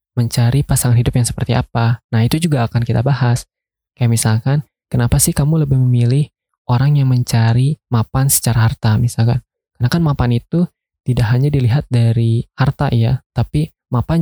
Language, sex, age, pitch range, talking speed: Indonesian, male, 20-39, 115-135 Hz, 160 wpm